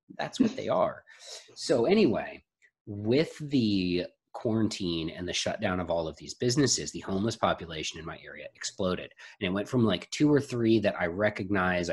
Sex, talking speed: male, 175 wpm